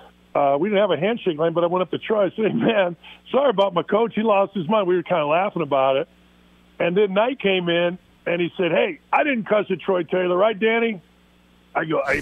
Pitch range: 165-200 Hz